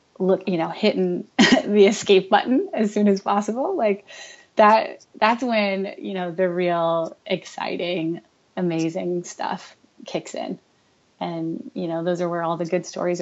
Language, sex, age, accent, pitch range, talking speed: English, female, 20-39, American, 175-205 Hz, 155 wpm